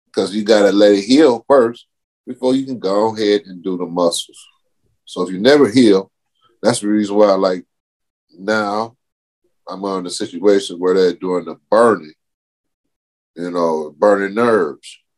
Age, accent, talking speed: 30-49, American, 160 wpm